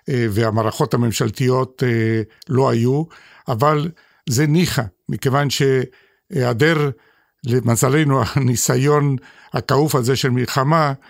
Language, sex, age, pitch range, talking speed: Hebrew, male, 60-79, 120-150 Hz, 80 wpm